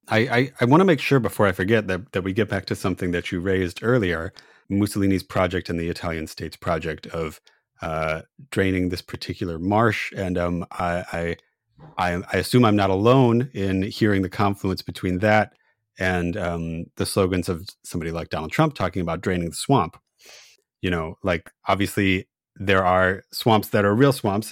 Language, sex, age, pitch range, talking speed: English, male, 30-49, 90-105 Hz, 180 wpm